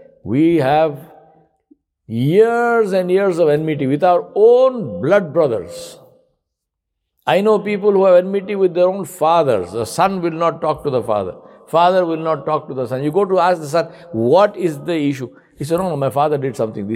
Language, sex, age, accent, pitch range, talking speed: English, male, 60-79, Indian, 125-185 Hz, 195 wpm